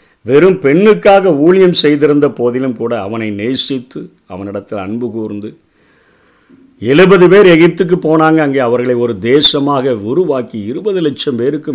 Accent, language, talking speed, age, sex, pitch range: native, Tamil, 115 wpm, 50-69, male, 120-155 Hz